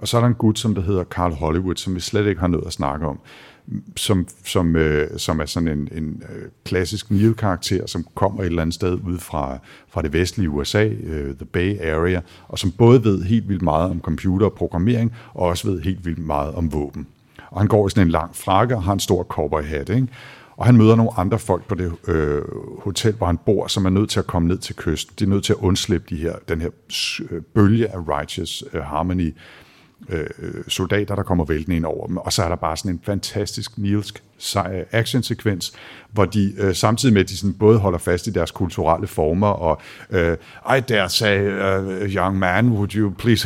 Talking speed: 215 wpm